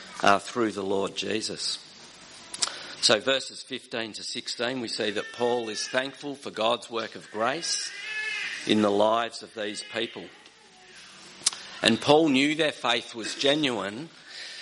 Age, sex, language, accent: 50-69, male, English, Australian